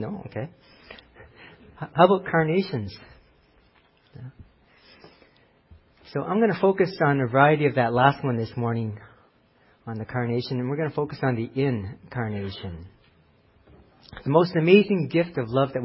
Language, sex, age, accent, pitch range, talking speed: English, male, 50-69, American, 115-145 Hz, 140 wpm